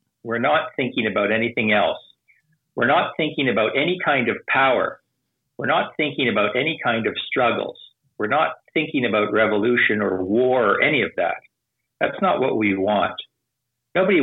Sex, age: male, 50-69